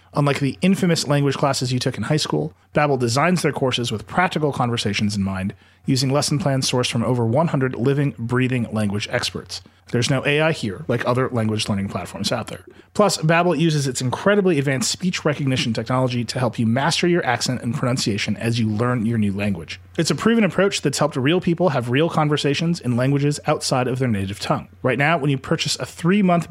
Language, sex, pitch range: English, male, 115-155 Hz